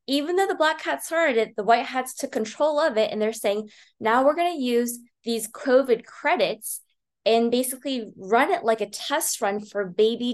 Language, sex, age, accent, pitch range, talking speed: English, female, 20-39, American, 205-255 Hz, 205 wpm